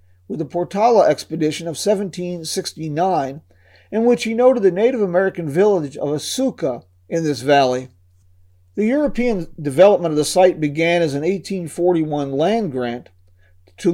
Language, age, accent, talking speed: English, 40-59, American, 140 wpm